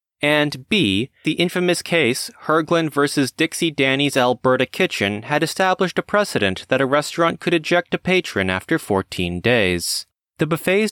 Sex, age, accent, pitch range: male, 30-49, American, 120-175 Hz